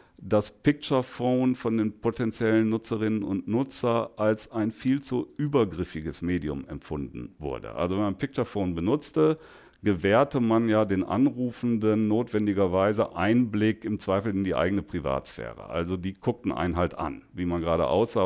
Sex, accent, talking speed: male, German, 145 wpm